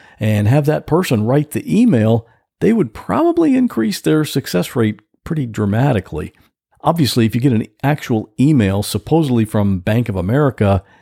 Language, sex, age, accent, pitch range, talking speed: English, male, 50-69, American, 110-170 Hz, 150 wpm